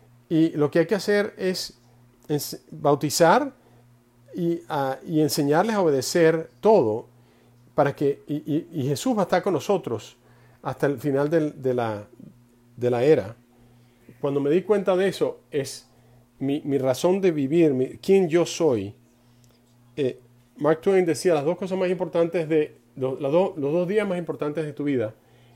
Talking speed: 165 wpm